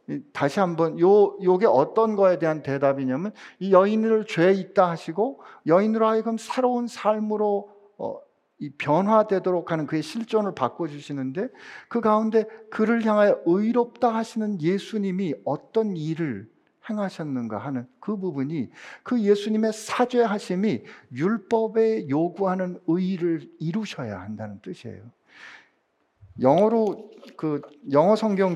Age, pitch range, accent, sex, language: 50-69, 145-215 Hz, native, male, Korean